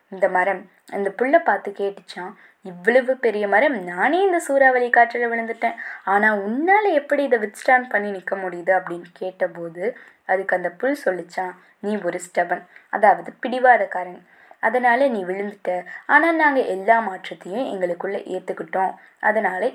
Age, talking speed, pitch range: 20-39, 120 wpm, 185-250 Hz